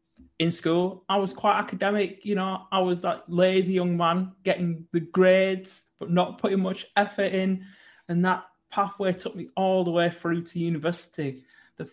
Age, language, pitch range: 20-39, English, 150-200 Hz